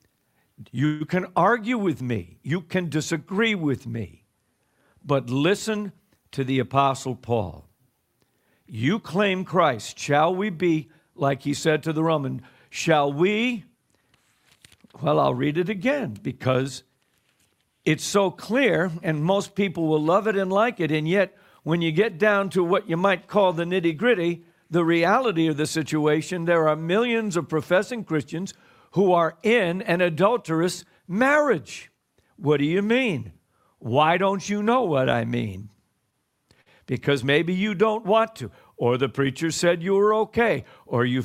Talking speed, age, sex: 150 wpm, 50-69, male